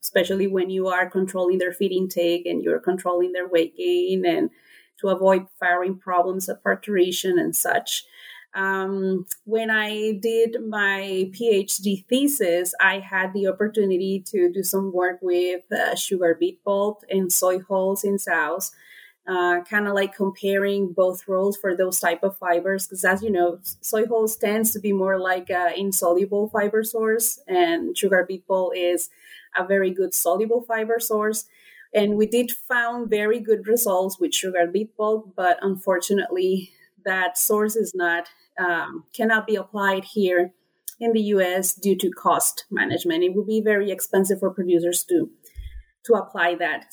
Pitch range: 185-215 Hz